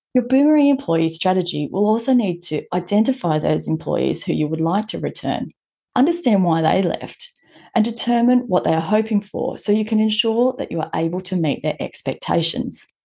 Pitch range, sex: 165-235 Hz, female